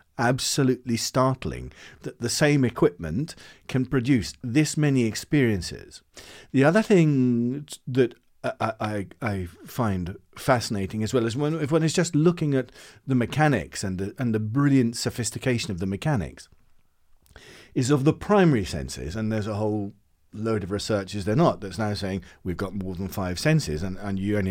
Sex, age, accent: male, 40-59, British